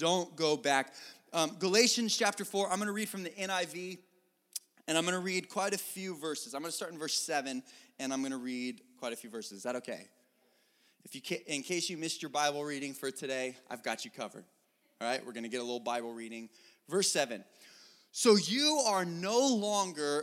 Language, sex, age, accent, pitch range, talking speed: English, male, 20-39, American, 145-215 Hz, 225 wpm